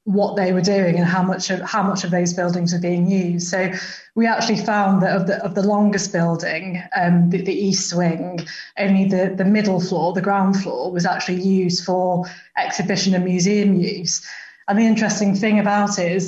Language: English